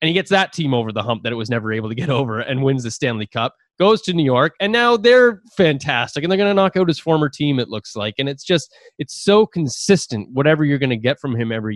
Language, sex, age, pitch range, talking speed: English, male, 20-39, 115-155 Hz, 280 wpm